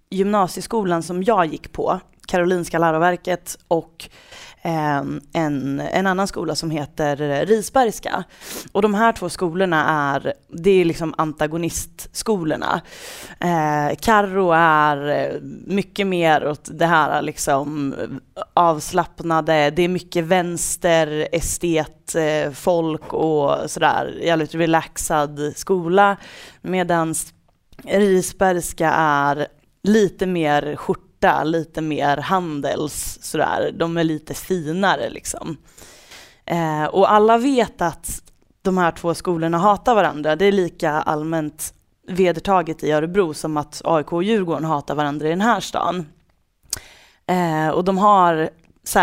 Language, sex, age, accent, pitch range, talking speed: Swedish, female, 20-39, native, 150-185 Hz, 115 wpm